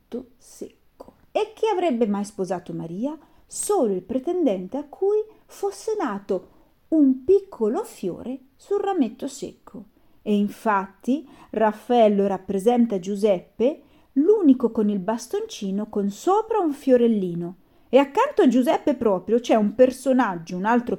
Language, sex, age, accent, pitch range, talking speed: Italian, female, 40-59, native, 205-305 Hz, 125 wpm